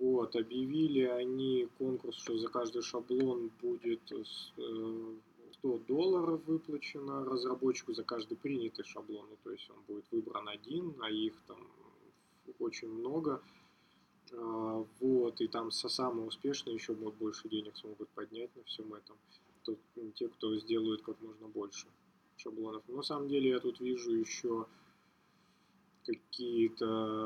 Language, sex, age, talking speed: Russian, male, 20-39, 125 wpm